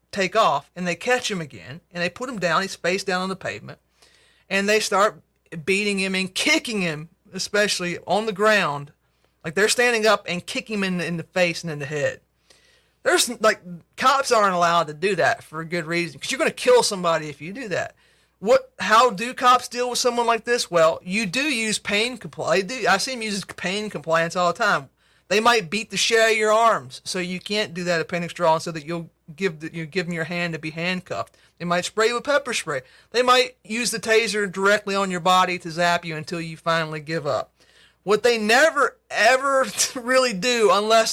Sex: male